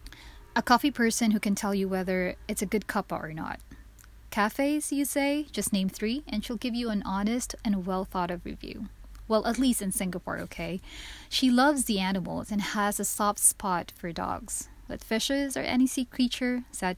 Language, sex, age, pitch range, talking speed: English, female, 20-39, 190-245 Hz, 185 wpm